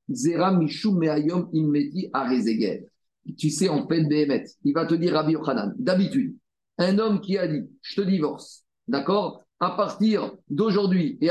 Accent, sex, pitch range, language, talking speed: French, male, 155-200 Hz, French, 135 wpm